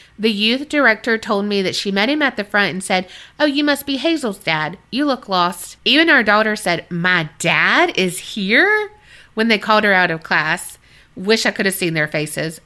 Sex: female